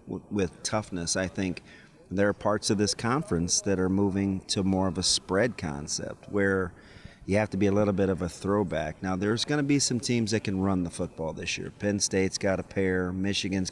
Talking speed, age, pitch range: 220 wpm, 30-49, 95-105 Hz